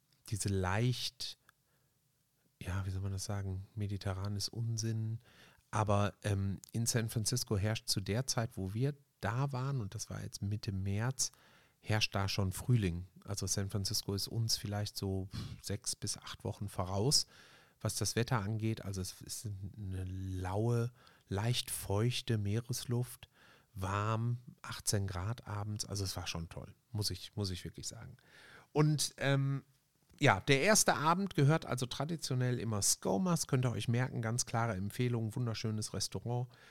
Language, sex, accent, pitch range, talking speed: German, male, German, 100-125 Hz, 150 wpm